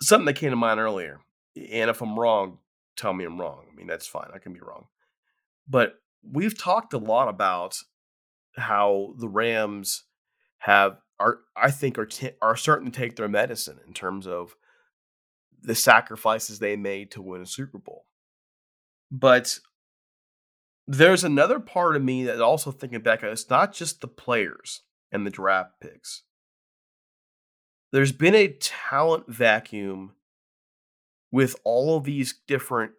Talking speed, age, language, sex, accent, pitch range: 155 wpm, 30-49, English, male, American, 100-135 Hz